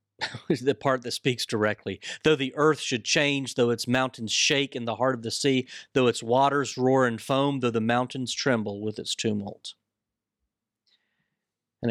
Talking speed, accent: 170 wpm, American